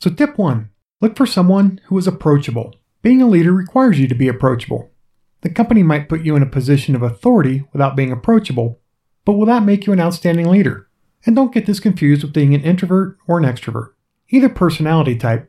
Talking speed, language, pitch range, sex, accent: 205 wpm, English, 140-200 Hz, male, American